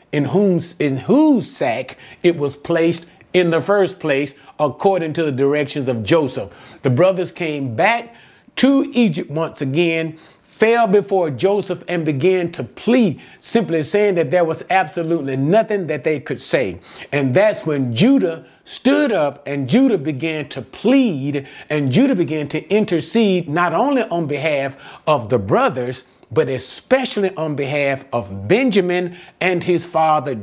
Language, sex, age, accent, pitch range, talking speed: English, male, 40-59, American, 135-190 Hz, 150 wpm